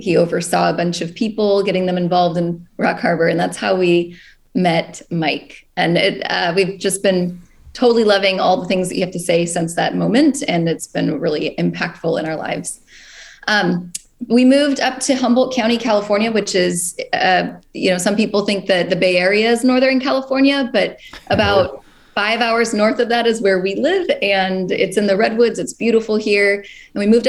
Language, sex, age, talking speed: English, female, 20-39, 195 wpm